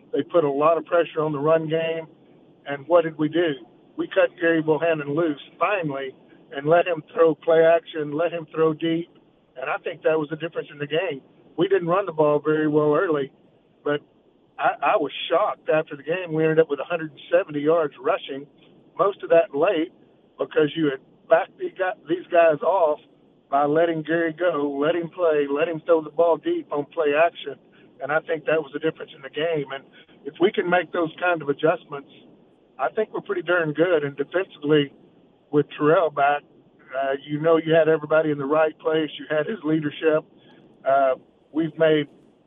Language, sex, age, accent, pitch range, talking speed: English, male, 50-69, American, 145-165 Hz, 195 wpm